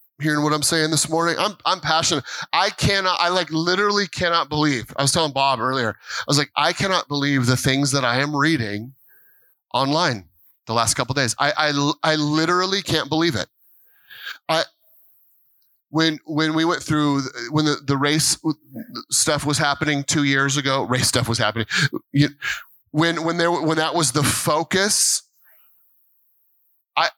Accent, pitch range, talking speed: American, 140-180 Hz, 165 wpm